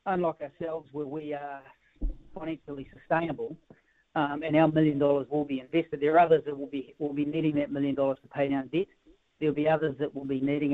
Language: English